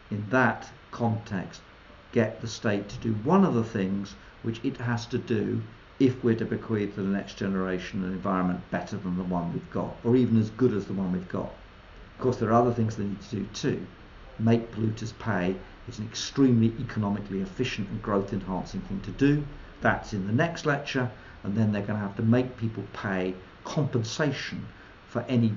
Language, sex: English, male